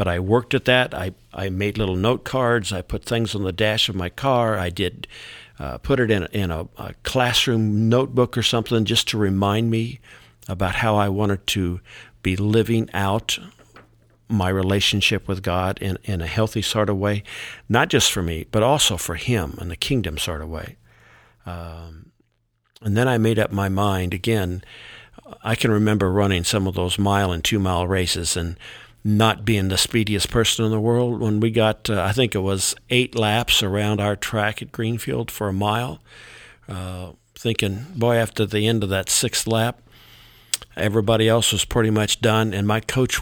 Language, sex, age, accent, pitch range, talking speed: English, male, 50-69, American, 95-115 Hz, 190 wpm